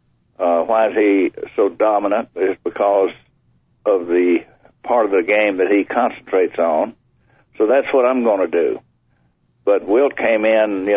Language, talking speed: English, 165 wpm